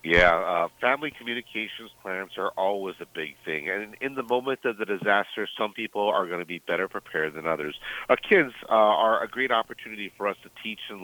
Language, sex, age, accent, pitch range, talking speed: English, male, 40-59, American, 100-120 Hz, 210 wpm